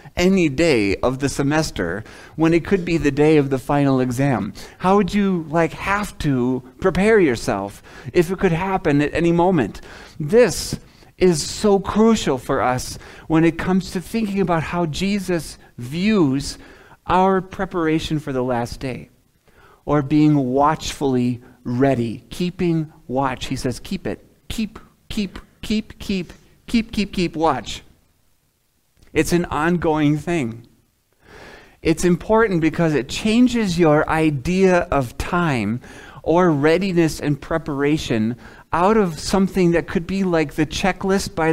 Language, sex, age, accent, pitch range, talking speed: English, male, 40-59, American, 135-180 Hz, 140 wpm